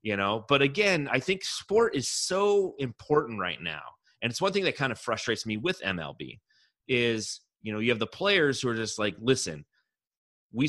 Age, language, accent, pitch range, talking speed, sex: 30-49, English, American, 95-125 Hz, 200 wpm, male